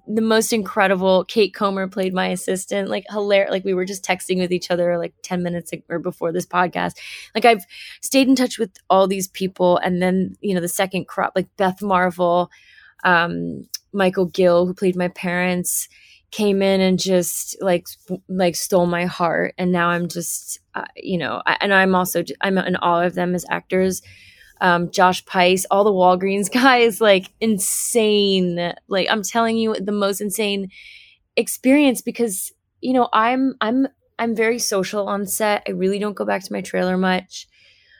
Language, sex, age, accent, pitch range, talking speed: English, female, 20-39, American, 180-200 Hz, 180 wpm